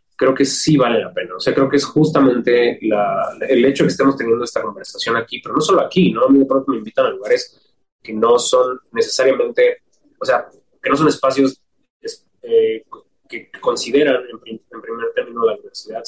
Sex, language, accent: male, Spanish, Mexican